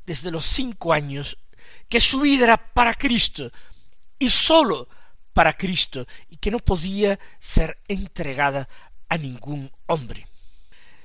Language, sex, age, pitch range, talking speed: Spanish, male, 50-69, 150-210 Hz, 125 wpm